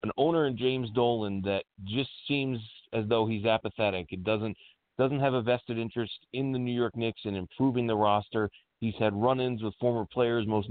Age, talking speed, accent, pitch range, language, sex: 40-59, 195 wpm, American, 110-135 Hz, English, male